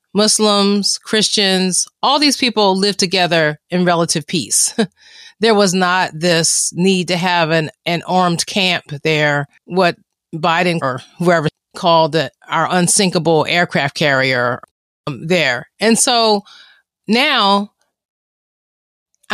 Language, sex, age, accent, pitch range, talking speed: English, female, 30-49, American, 165-200 Hz, 120 wpm